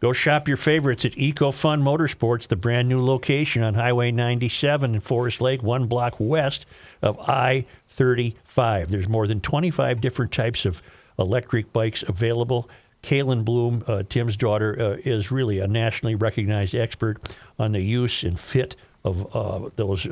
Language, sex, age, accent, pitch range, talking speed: English, male, 50-69, American, 110-130 Hz, 150 wpm